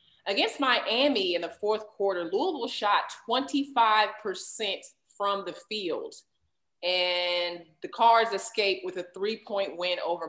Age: 30-49